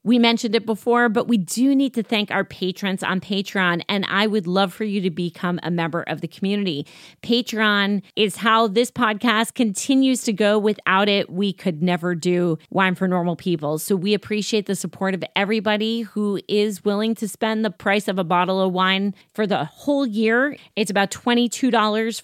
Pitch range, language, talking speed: 180-220 Hz, English, 190 wpm